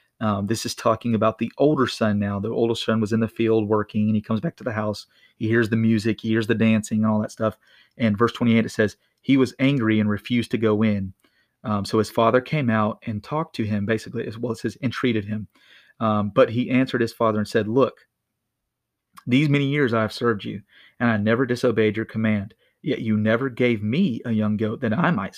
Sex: male